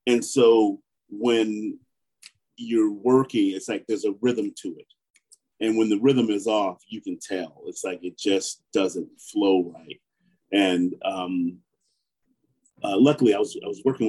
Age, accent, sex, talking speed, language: 40-59, American, male, 160 wpm, English